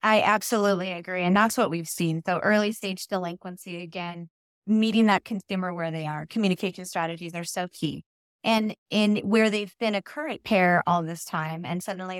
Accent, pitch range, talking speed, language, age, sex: American, 175-210 Hz, 180 wpm, English, 20-39, female